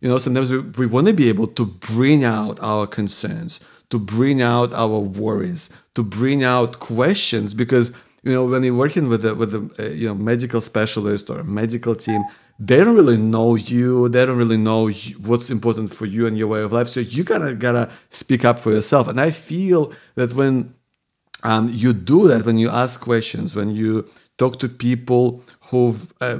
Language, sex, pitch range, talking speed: English, male, 115-135 Hz, 200 wpm